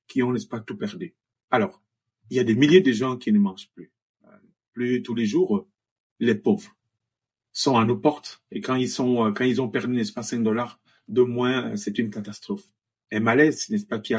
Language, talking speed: French, 215 wpm